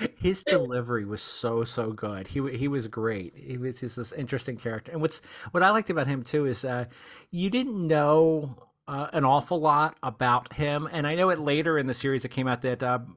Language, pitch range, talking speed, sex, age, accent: English, 120-150 Hz, 220 wpm, male, 40-59, American